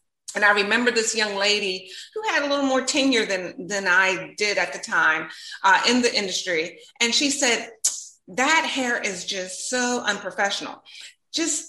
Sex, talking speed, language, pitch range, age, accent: female, 170 wpm, English, 220-280 Hz, 30-49, American